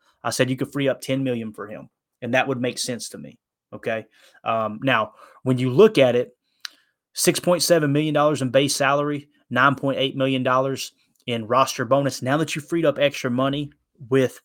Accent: American